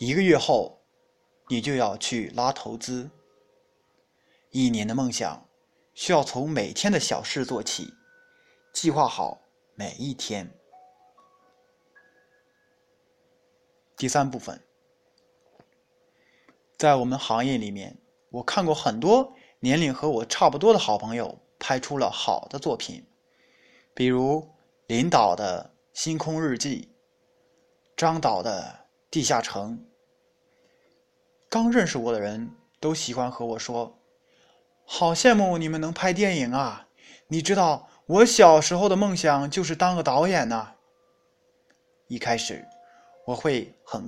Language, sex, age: Chinese, male, 20-39